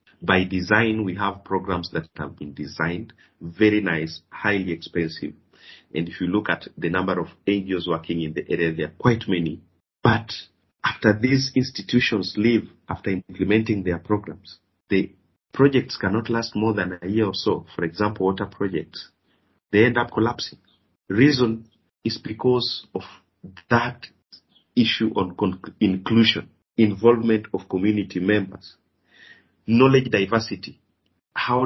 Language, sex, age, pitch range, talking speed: English, male, 40-59, 85-110 Hz, 135 wpm